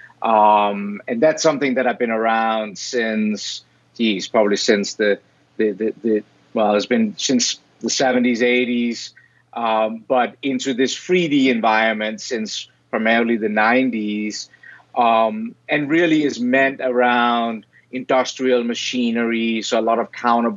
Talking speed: 135 wpm